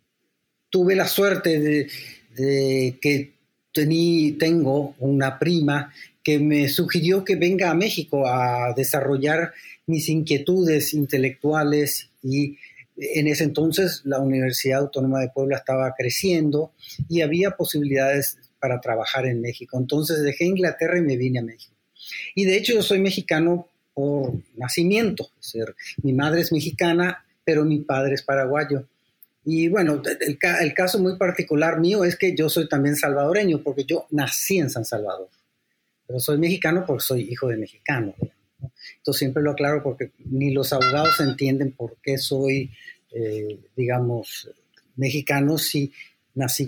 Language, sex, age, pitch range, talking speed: Spanish, male, 40-59, 130-165 Hz, 145 wpm